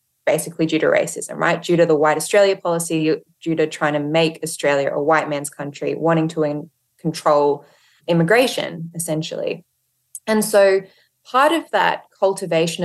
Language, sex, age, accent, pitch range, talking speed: English, female, 20-39, Australian, 150-195 Hz, 155 wpm